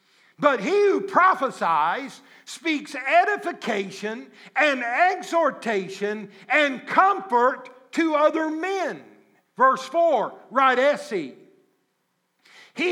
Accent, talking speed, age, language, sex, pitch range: American, 85 wpm, 60-79, English, male, 230-285 Hz